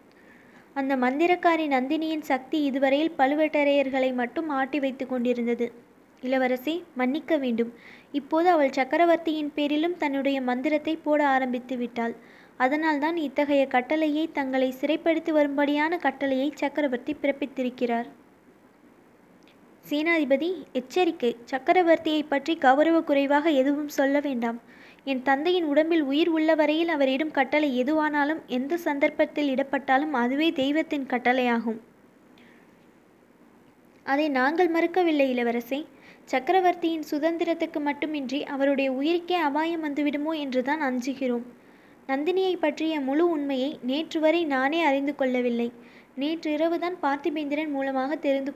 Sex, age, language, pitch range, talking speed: female, 20-39, Tamil, 265-315 Hz, 95 wpm